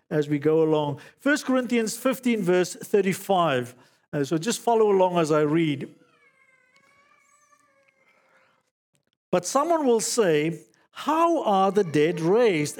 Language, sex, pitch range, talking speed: English, male, 150-195 Hz, 120 wpm